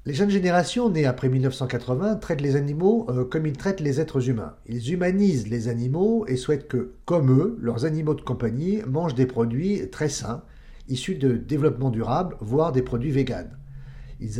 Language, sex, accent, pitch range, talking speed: English, male, French, 125-155 Hz, 175 wpm